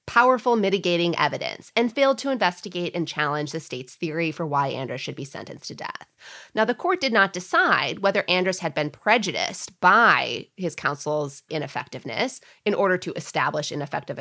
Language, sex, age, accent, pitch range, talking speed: English, female, 30-49, American, 150-205 Hz, 170 wpm